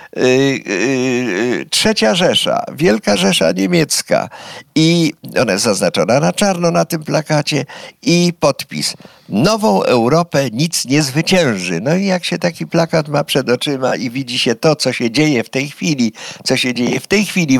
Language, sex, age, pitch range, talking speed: Polish, male, 50-69, 120-165 Hz, 155 wpm